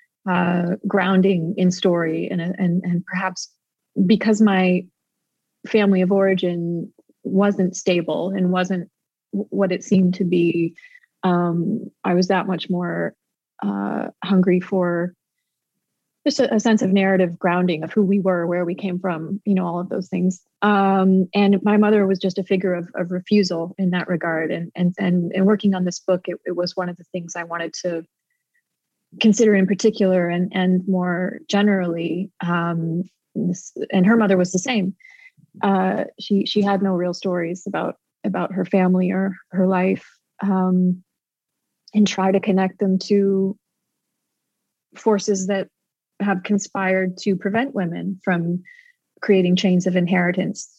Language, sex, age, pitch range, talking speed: English, female, 30-49, 180-200 Hz, 155 wpm